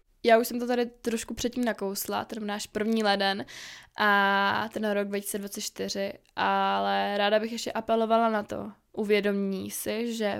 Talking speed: 150 wpm